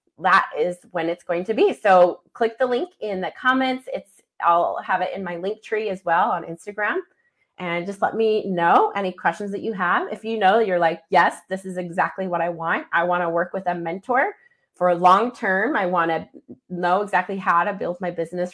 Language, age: English, 30-49